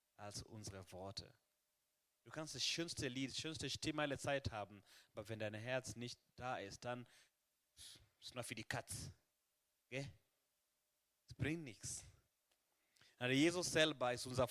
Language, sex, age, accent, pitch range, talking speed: German, male, 30-49, German, 110-150 Hz, 150 wpm